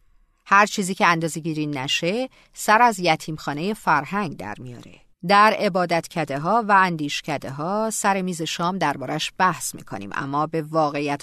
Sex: female